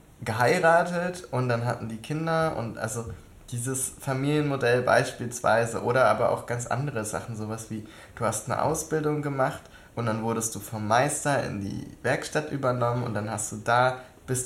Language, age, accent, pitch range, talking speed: German, 20-39, German, 110-130 Hz, 165 wpm